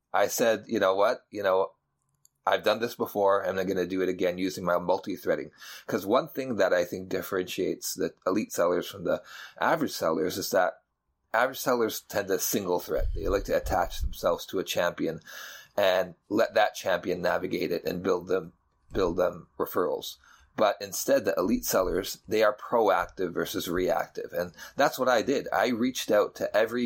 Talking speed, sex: 185 wpm, male